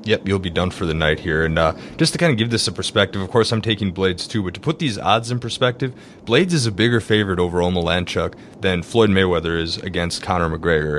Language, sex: English, male